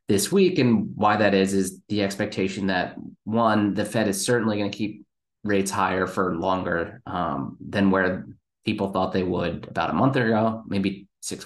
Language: English